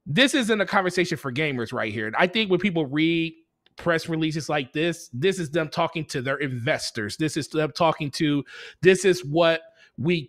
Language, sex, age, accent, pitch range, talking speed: English, male, 20-39, American, 150-180 Hz, 200 wpm